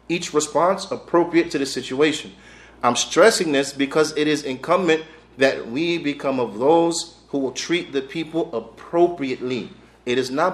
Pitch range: 135-165 Hz